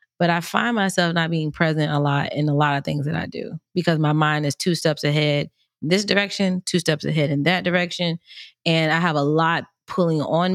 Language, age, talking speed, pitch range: English, 20-39, 230 wpm, 150-175 Hz